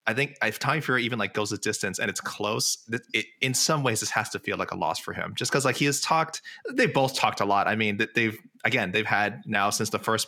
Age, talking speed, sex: 20-39, 290 wpm, male